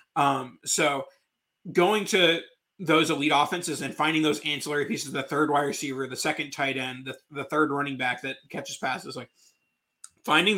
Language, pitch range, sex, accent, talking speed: English, 140-170 Hz, male, American, 170 wpm